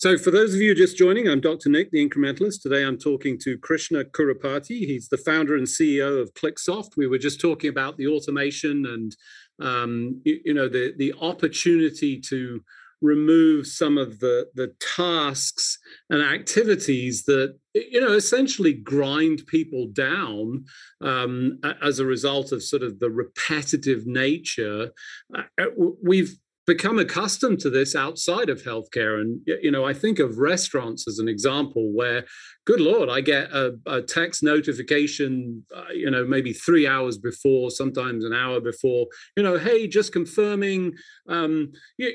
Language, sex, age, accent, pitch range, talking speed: English, male, 40-59, British, 135-180 Hz, 160 wpm